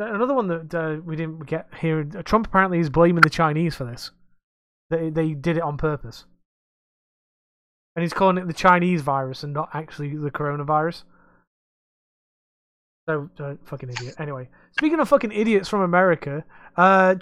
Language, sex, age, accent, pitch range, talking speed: English, male, 20-39, British, 150-180 Hz, 160 wpm